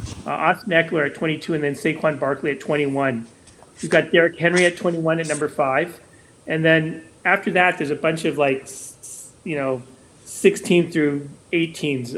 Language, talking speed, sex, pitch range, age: English, 170 wpm, male, 140-160 Hz, 30-49